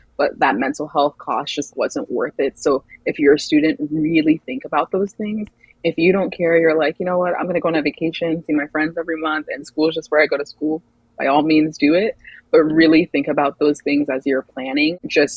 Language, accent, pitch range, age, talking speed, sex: English, American, 145-180 Hz, 20-39, 245 wpm, female